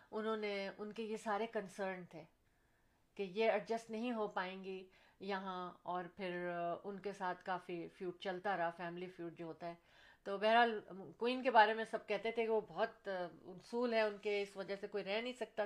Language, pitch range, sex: Urdu, 190-225 Hz, female